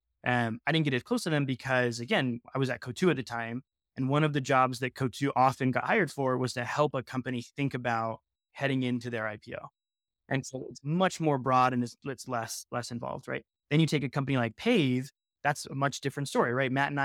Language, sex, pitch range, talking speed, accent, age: English, male, 120-140 Hz, 245 wpm, American, 20-39